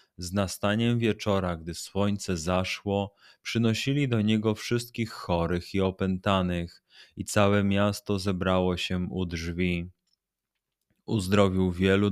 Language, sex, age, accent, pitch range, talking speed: Polish, male, 30-49, native, 90-105 Hz, 110 wpm